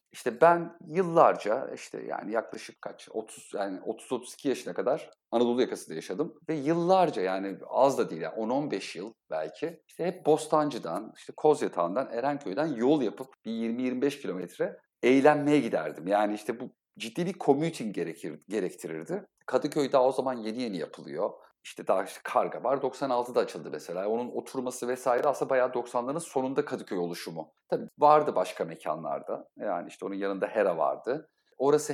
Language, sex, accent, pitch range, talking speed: Turkish, male, native, 115-150 Hz, 150 wpm